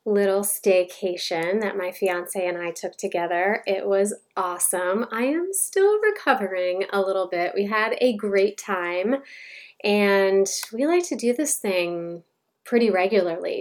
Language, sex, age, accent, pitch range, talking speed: English, female, 20-39, American, 190-245 Hz, 145 wpm